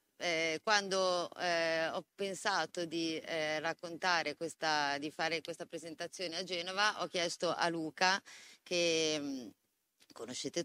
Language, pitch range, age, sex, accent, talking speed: Italian, 155-195 Hz, 30-49, female, native, 125 wpm